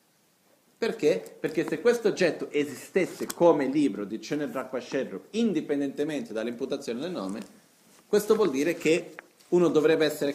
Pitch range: 130-185 Hz